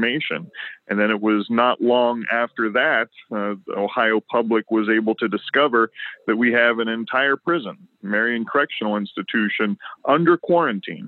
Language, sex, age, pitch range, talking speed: English, male, 40-59, 105-120 Hz, 145 wpm